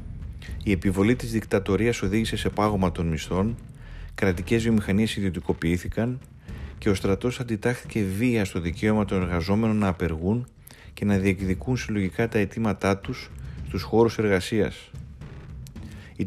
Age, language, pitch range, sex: 30-49, Greek, 90-110 Hz, male